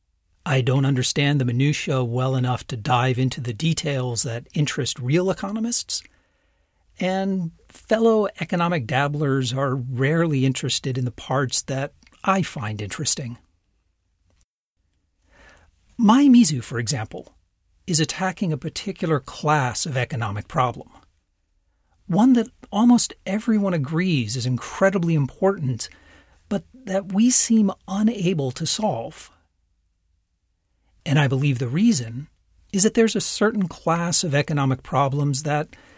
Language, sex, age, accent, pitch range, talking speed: English, male, 40-59, American, 115-170 Hz, 120 wpm